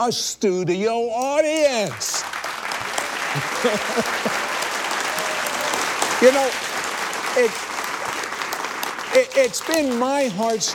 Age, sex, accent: 60-79, male, American